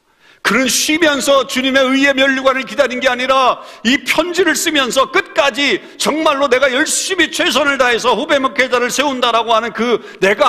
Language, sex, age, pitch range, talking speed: English, male, 50-69, 170-270 Hz, 130 wpm